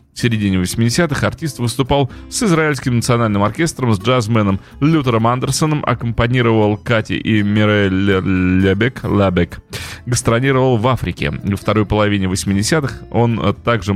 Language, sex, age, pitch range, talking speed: Russian, male, 30-49, 100-135 Hz, 120 wpm